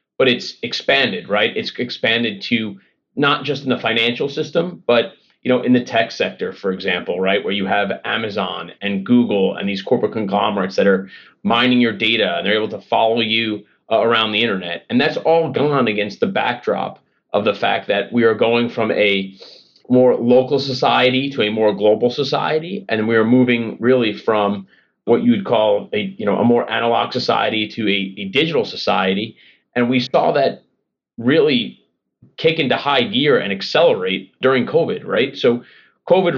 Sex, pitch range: male, 105-130 Hz